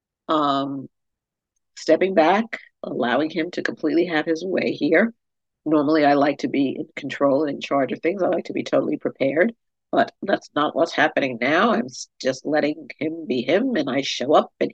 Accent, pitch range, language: American, 140-190 Hz, English